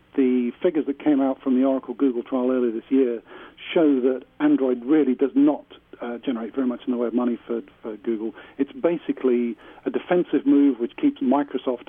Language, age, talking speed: English, 50-69, 195 wpm